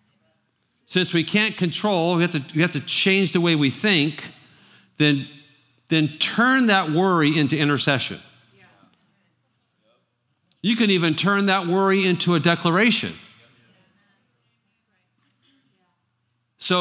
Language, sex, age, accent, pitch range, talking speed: English, male, 50-69, American, 120-175 Hz, 105 wpm